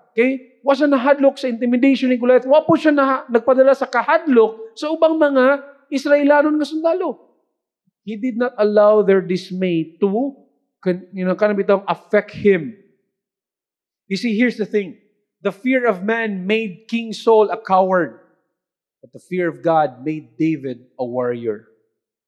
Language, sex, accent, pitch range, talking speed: English, male, Filipino, 185-260 Hz, 140 wpm